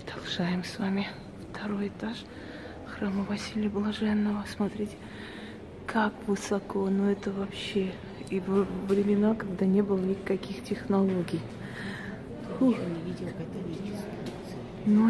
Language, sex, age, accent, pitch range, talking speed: Russian, female, 30-49, native, 190-215 Hz, 90 wpm